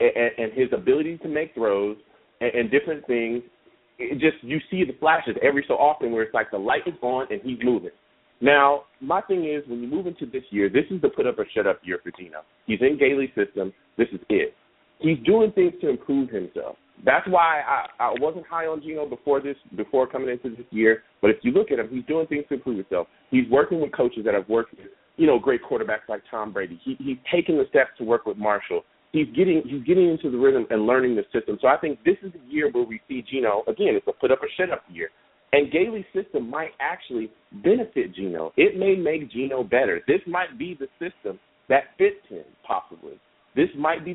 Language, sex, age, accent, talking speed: English, male, 30-49, American, 230 wpm